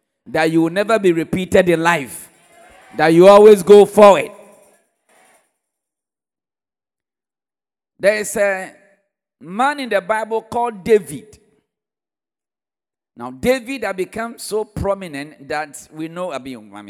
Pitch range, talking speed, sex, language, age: 155-230 Hz, 120 wpm, male, English, 50-69